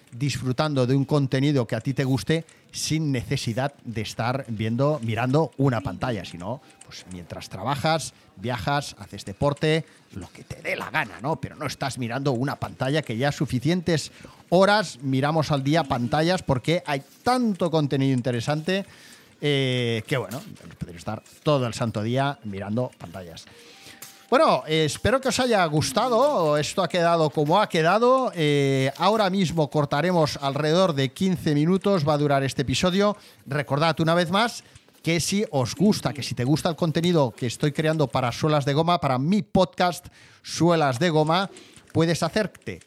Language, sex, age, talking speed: Spanish, male, 40-59, 160 wpm